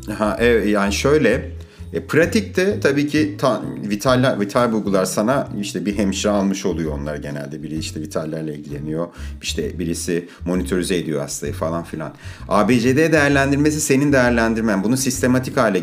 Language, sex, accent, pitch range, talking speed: Turkish, male, native, 90-130 Hz, 145 wpm